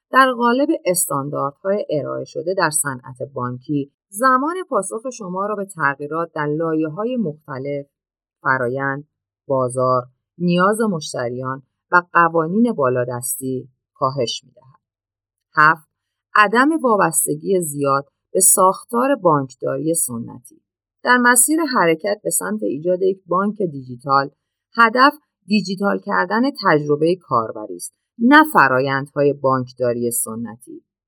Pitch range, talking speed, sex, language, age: 140-220 Hz, 105 wpm, female, Persian, 40-59